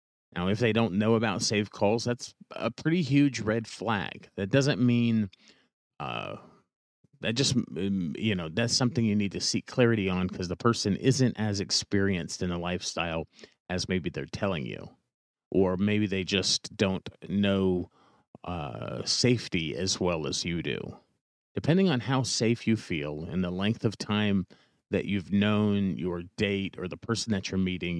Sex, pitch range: male, 95-115 Hz